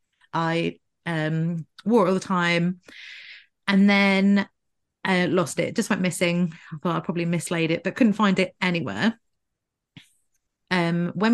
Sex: female